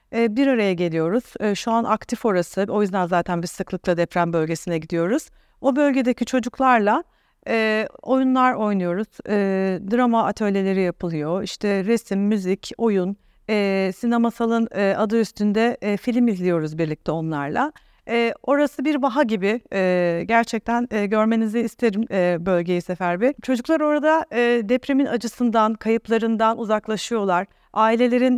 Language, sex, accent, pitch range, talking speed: Turkish, female, native, 190-235 Hz, 110 wpm